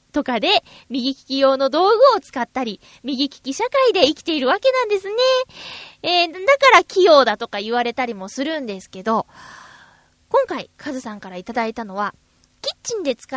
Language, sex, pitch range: Japanese, female, 225-350 Hz